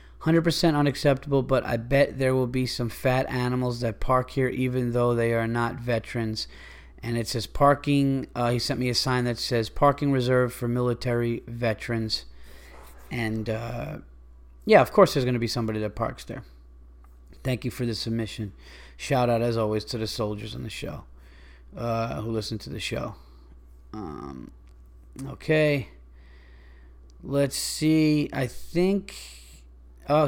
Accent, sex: American, male